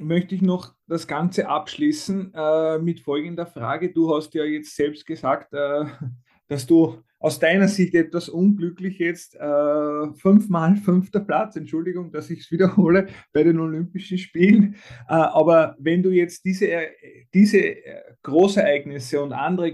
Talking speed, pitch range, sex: 145 wpm, 155-200 Hz, male